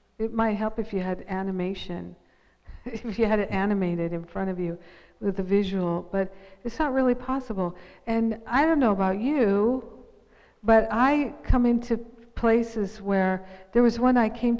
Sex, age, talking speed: female, 50-69, 170 wpm